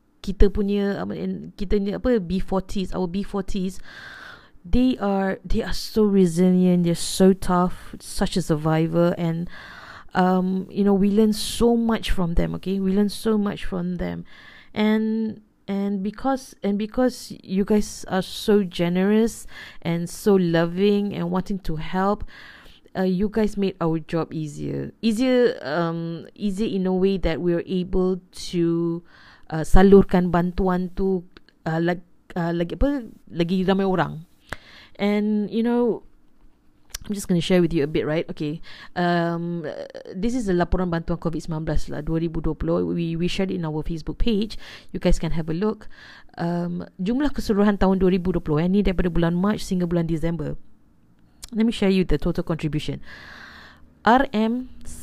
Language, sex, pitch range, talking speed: Malay, female, 170-205 Hz, 155 wpm